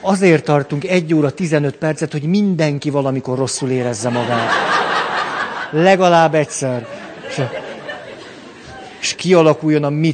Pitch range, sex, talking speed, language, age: 130-170 Hz, male, 105 wpm, Hungarian, 50-69